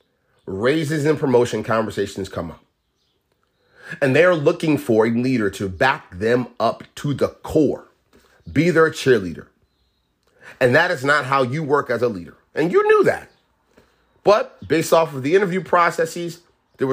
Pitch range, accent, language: 120-160 Hz, American, English